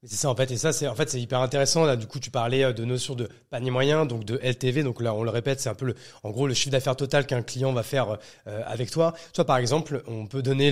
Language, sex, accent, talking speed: French, male, French, 295 wpm